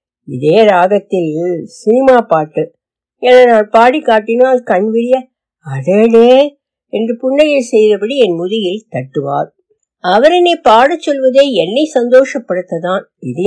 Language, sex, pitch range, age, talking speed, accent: Tamil, female, 180-265 Hz, 60-79, 100 wpm, native